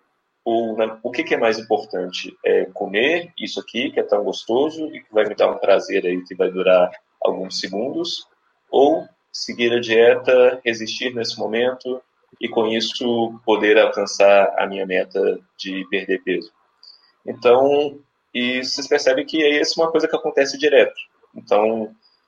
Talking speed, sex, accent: 155 wpm, male, Brazilian